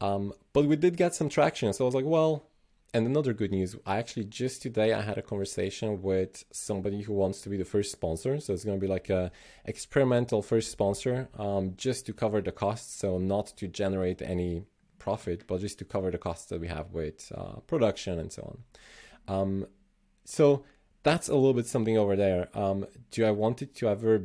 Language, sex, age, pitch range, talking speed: English, male, 20-39, 95-115 Hz, 215 wpm